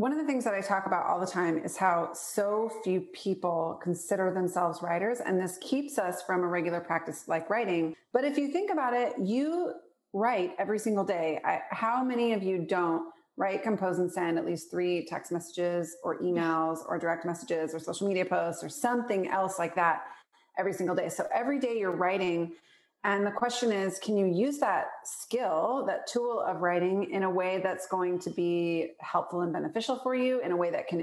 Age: 30-49